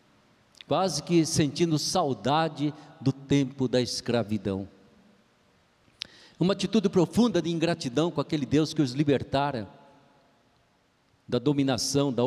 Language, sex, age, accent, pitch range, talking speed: Portuguese, male, 50-69, Brazilian, 115-155 Hz, 110 wpm